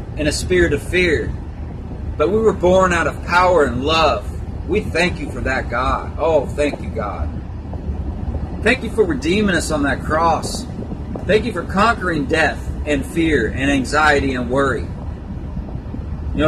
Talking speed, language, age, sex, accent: 160 wpm, English, 40-59, male, American